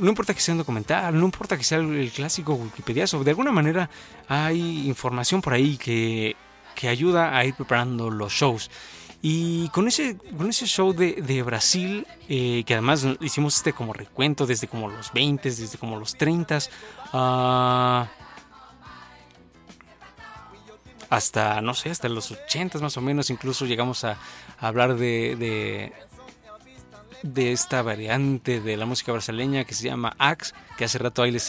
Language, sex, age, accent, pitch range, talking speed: Spanish, male, 30-49, Mexican, 120-160 Hz, 160 wpm